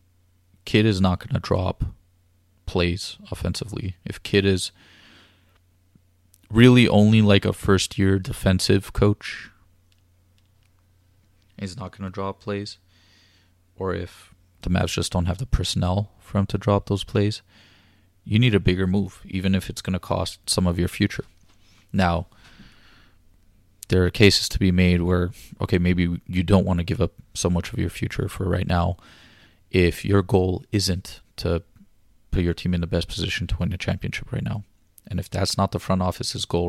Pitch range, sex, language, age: 90-100 Hz, male, English, 20-39